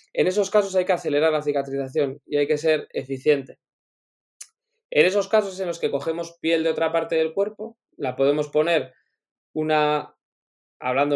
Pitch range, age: 140-160 Hz, 20-39